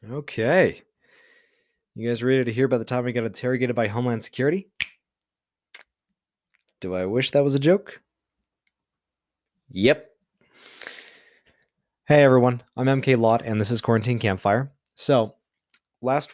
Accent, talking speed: American, 130 wpm